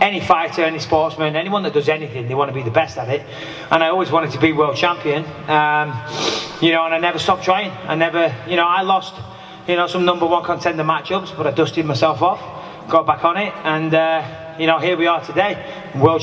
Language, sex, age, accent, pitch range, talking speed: English, male, 30-49, British, 155-190 Hz, 235 wpm